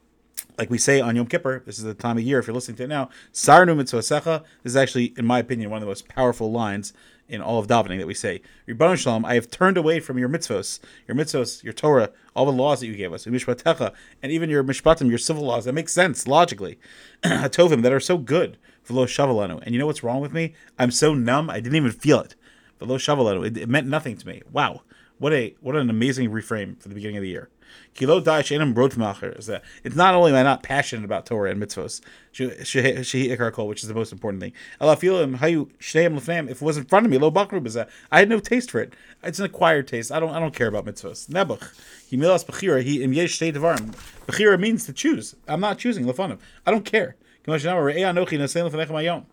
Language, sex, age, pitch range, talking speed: English, male, 30-49, 120-160 Hz, 195 wpm